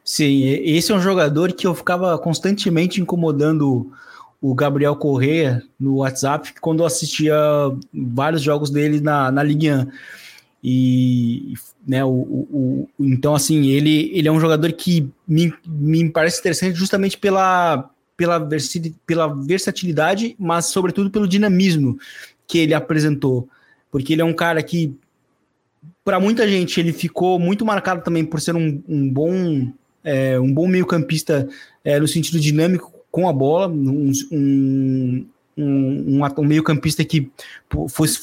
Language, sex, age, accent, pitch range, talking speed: Portuguese, male, 20-39, Brazilian, 140-170 Hz, 135 wpm